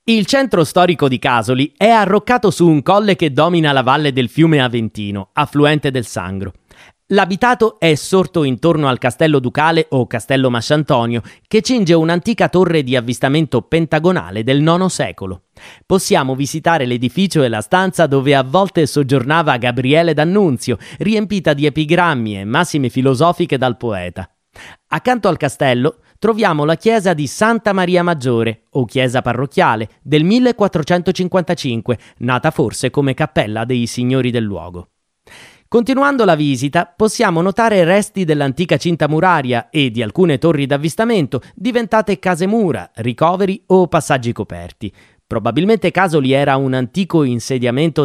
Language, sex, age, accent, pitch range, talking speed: Italian, male, 30-49, native, 125-185 Hz, 135 wpm